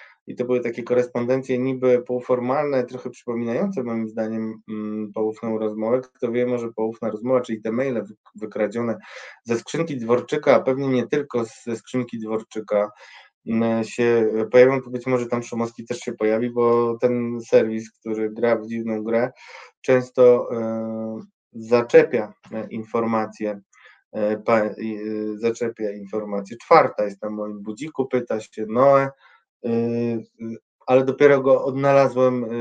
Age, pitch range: 20-39, 110-130 Hz